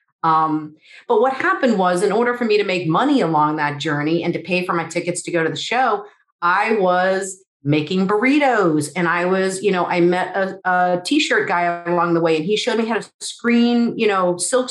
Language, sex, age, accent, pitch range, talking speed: English, female, 40-59, American, 165-210 Hz, 220 wpm